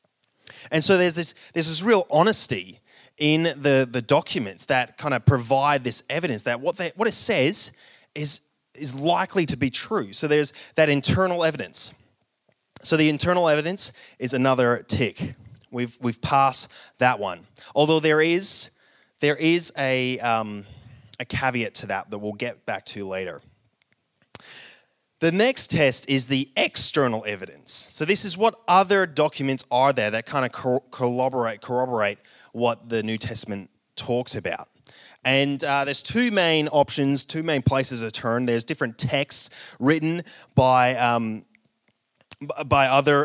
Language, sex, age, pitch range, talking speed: English, male, 20-39, 120-155 Hz, 150 wpm